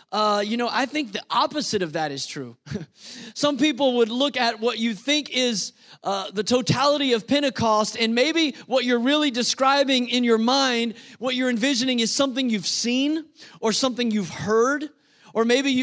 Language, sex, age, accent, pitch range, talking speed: English, male, 30-49, American, 215-255 Hz, 180 wpm